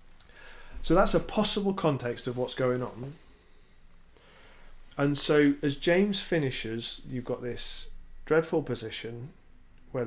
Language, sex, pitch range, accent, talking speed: English, male, 85-140 Hz, British, 120 wpm